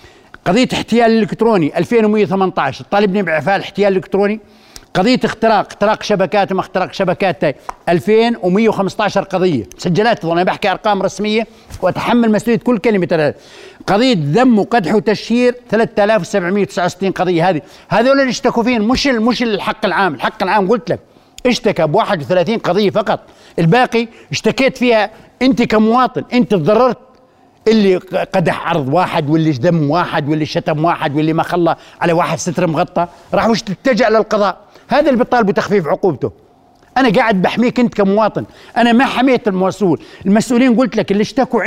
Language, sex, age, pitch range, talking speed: Arabic, male, 60-79, 185-230 Hz, 145 wpm